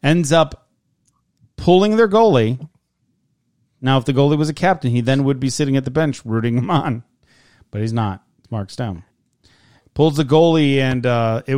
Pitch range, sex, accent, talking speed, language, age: 120-145 Hz, male, American, 180 wpm, English, 40-59